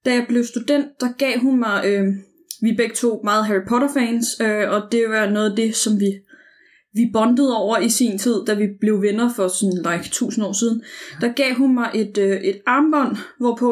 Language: Danish